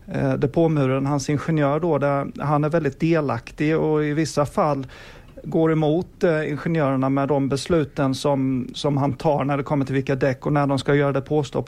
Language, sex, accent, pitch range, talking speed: Swedish, male, native, 140-155 Hz, 190 wpm